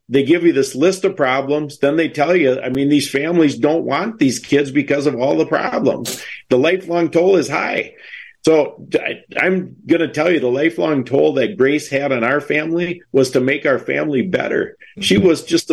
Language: English